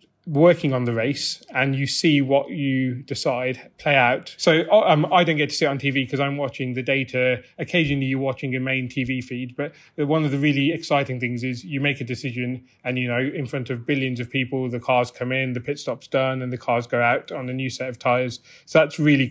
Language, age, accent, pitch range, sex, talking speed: English, 30-49, British, 130-150 Hz, male, 240 wpm